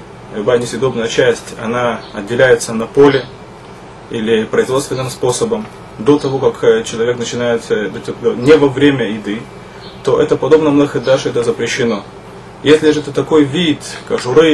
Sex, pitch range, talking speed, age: male, 120-150 Hz, 130 wpm, 20-39